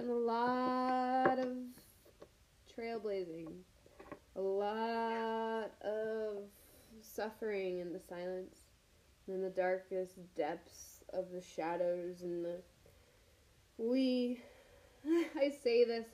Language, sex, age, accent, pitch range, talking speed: English, female, 20-39, American, 190-260 Hz, 95 wpm